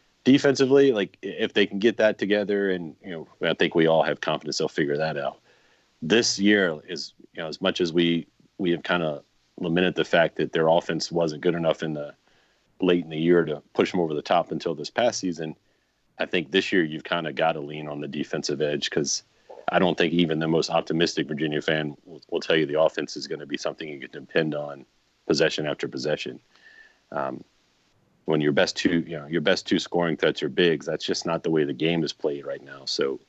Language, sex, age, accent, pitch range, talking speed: English, male, 30-49, American, 80-95 Hz, 230 wpm